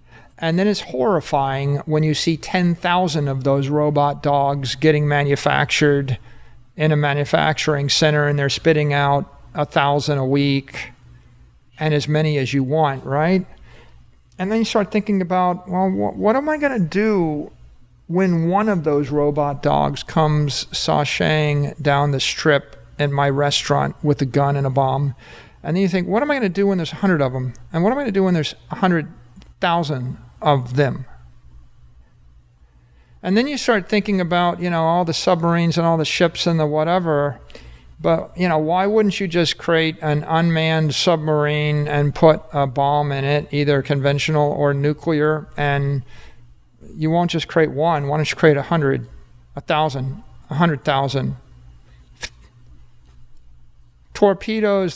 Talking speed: 165 wpm